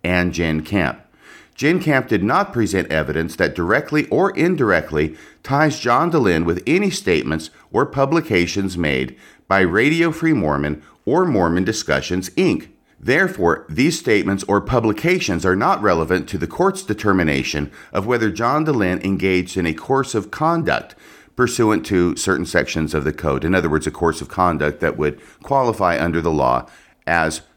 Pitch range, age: 85-120 Hz, 50-69